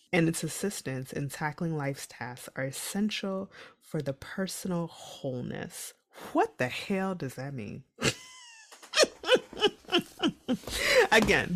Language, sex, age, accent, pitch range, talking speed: English, female, 20-39, American, 135-200 Hz, 105 wpm